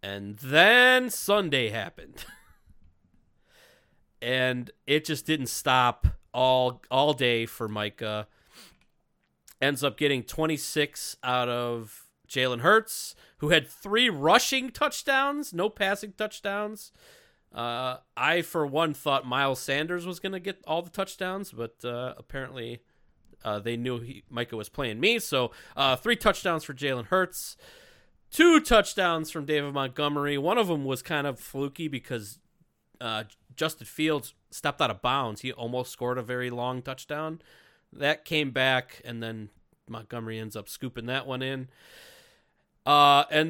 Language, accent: English, American